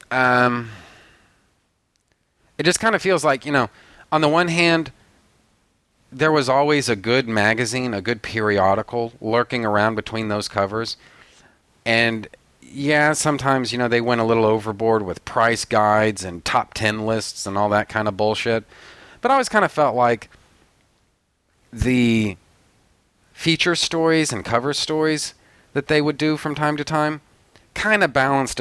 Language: English